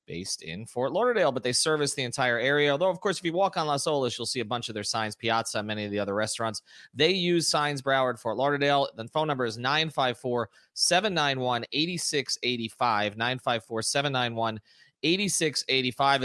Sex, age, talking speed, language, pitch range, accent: male, 30-49, 165 wpm, English, 115-150 Hz, American